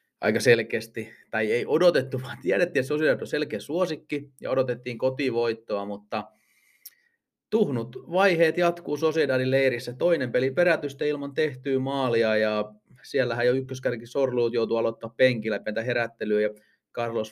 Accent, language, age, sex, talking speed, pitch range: native, Finnish, 30-49, male, 130 wpm, 110-140 Hz